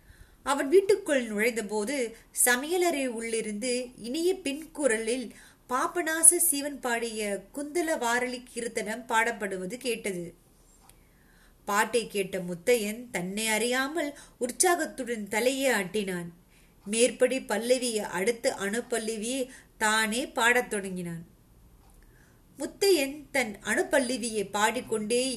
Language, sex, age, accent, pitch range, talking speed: Tamil, female, 30-49, native, 210-265 Hz, 90 wpm